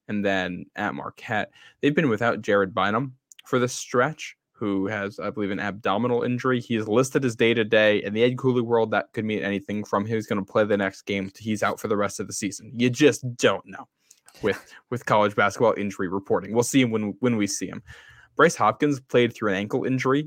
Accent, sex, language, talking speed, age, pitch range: American, male, English, 220 wpm, 10-29, 100-125 Hz